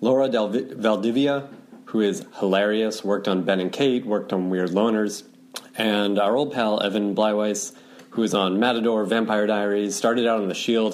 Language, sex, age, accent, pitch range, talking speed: English, male, 30-49, American, 100-125 Hz, 170 wpm